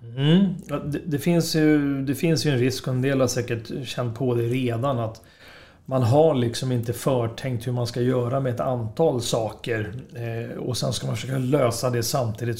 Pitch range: 120-150 Hz